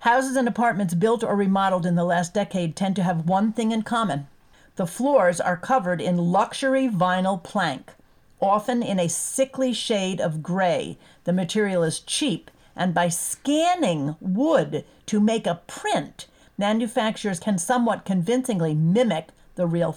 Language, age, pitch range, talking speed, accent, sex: English, 50-69, 175-220 Hz, 155 wpm, American, female